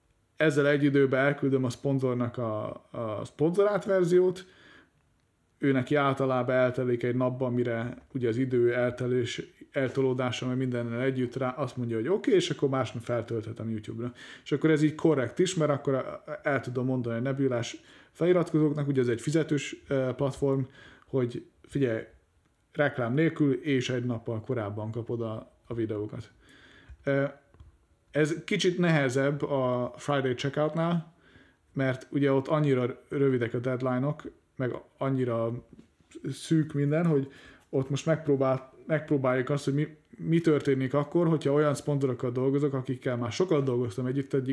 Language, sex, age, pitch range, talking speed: Hungarian, male, 30-49, 125-145 Hz, 140 wpm